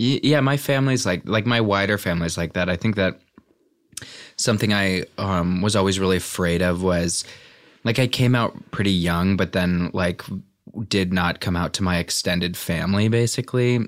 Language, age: English, 20-39